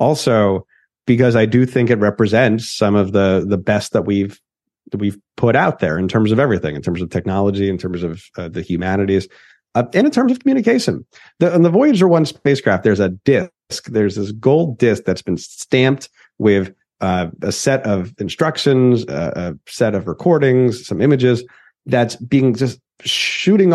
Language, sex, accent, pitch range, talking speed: English, male, American, 100-130 Hz, 180 wpm